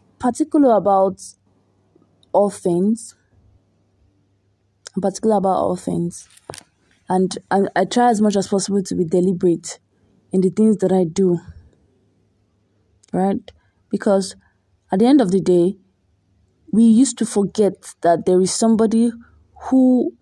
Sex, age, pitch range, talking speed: female, 20-39, 180-230 Hz, 125 wpm